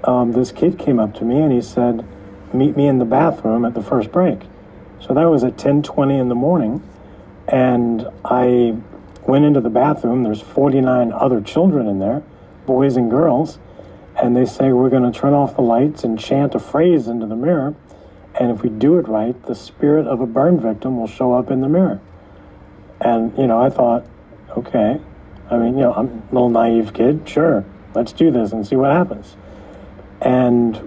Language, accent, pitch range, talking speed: English, American, 100-140 Hz, 195 wpm